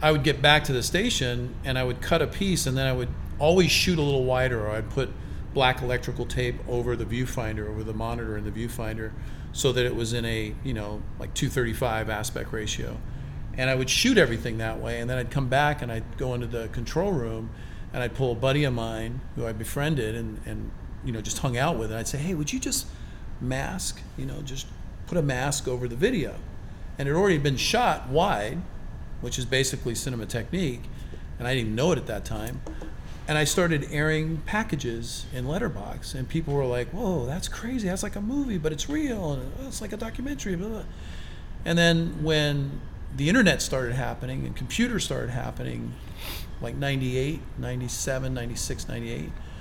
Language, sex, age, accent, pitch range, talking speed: English, male, 40-59, American, 115-145 Hz, 195 wpm